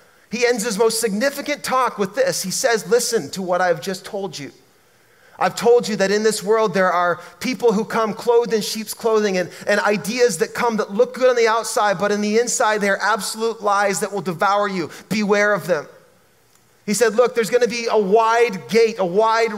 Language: English